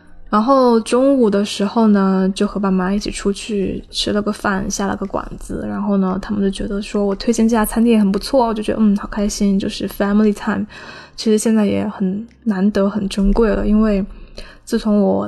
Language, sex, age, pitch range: Chinese, female, 10-29, 195-220 Hz